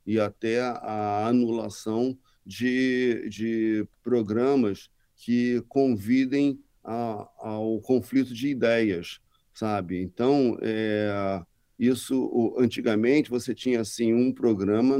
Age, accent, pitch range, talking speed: 40-59, Brazilian, 110-135 Hz, 95 wpm